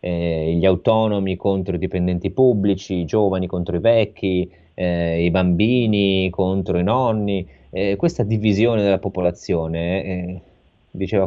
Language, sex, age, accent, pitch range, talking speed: Italian, male, 30-49, native, 85-100 Hz, 130 wpm